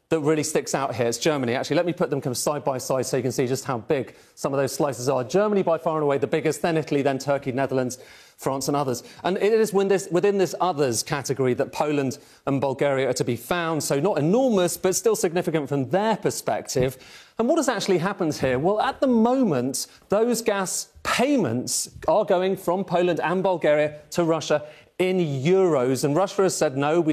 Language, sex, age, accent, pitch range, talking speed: English, male, 40-59, British, 145-195 Hz, 215 wpm